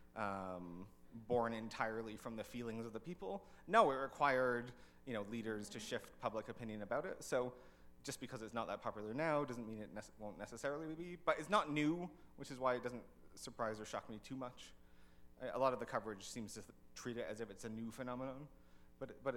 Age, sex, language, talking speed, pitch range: 30-49, male, English, 215 wpm, 100-130 Hz